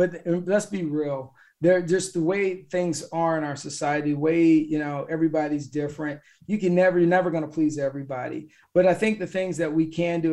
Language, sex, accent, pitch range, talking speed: English, male, American, 145-165 Hz, 210 wpm